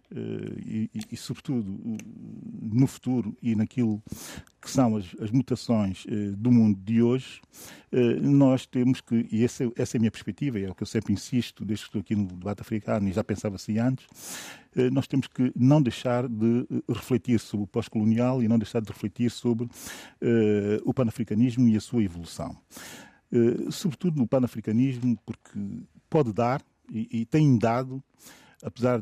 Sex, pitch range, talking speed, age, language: male, 110-125 Hz, 175 wpm, 50-69, Portuguese